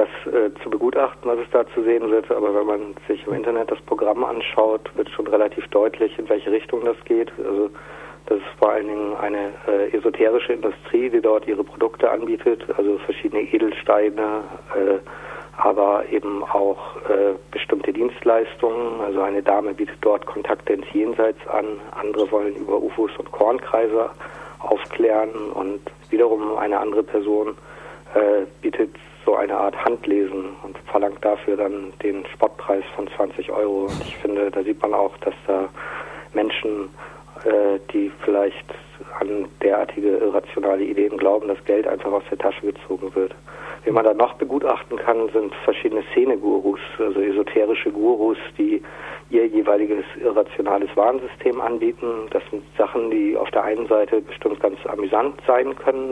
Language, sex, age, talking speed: German, male, 50-69, 155 wpm